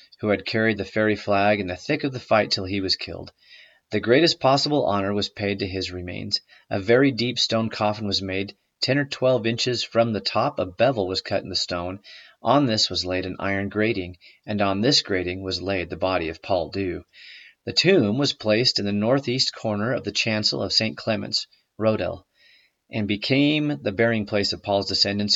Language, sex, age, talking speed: English, male, 30-49, 205 wpm